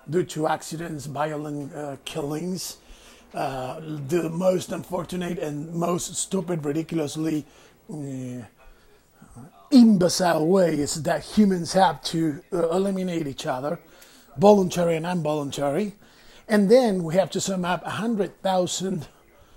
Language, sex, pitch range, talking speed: English, male, 155-205 Hz, 115 wpm